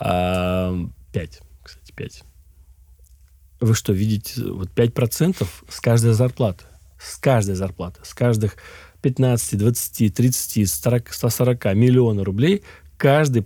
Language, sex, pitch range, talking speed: Russian, male, 95-130 Hz, 100 wpm